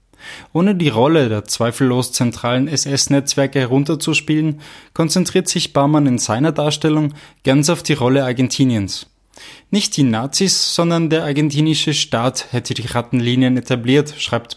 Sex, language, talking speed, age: male, German, 130 wpm, 20-39